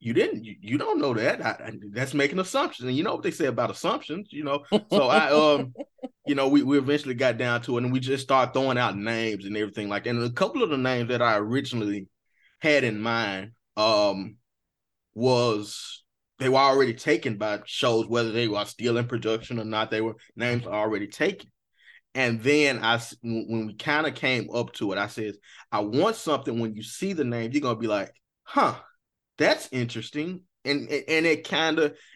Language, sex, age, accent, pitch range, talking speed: English, male, 20-39, American, 105-135 Hz, 210 wpm